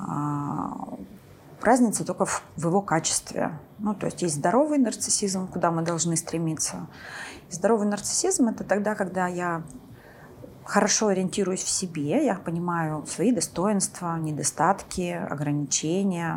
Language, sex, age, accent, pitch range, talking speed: Russian, female, 30-49, native, 160-215 Hz, 115 wpm